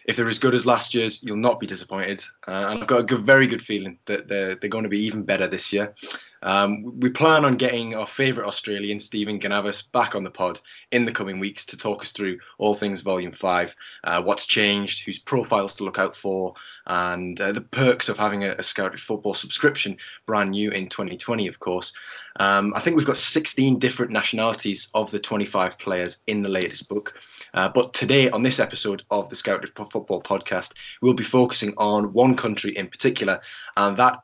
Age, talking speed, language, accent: 20-39, 205 wpm, English, British